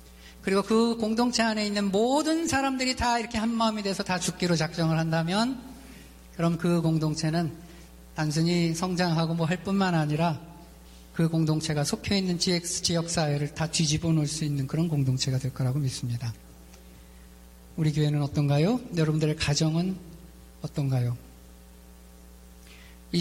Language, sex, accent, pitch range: Korean, male, native, 140-185 Hz